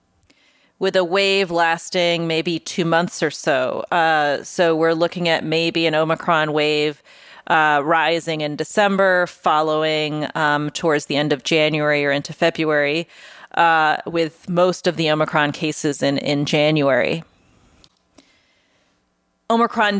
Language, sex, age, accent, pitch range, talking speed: English, female, 30-49, American, 165-200 Hz, 130 wpm